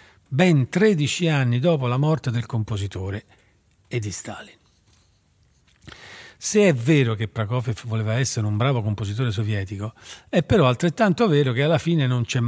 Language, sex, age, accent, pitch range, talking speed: Italian, male, 40-59, native, 115-155 Hz, 150 wpm